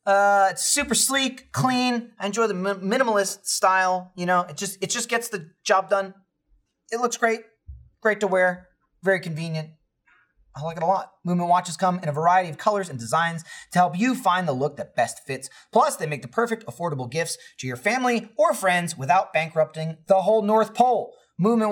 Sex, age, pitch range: male, 30-49, 150-210 Hz